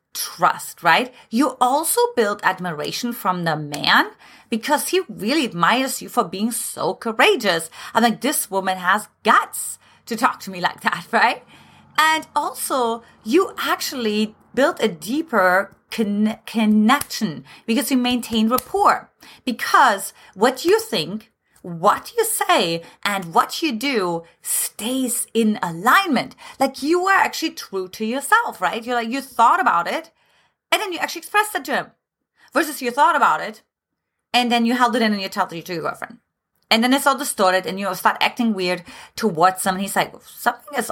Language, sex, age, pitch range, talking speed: English, female, 30-49, 195-280 Hz, 165 wpm